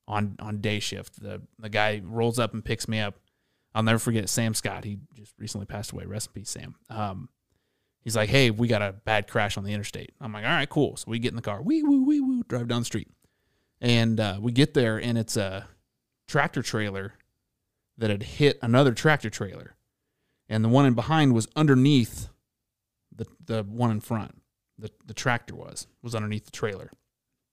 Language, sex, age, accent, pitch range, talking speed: English, male, 30-49, American, 105-125 Hz, 205 wpm